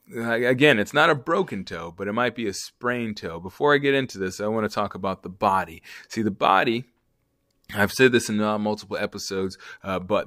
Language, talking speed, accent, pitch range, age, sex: English, 210 wpm, American, 100-130 Hz, 30-49, male